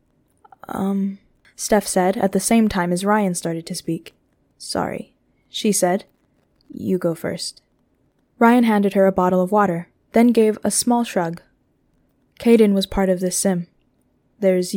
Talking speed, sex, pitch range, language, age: 150 wpm, female, 175-200 Hz, English, 10-29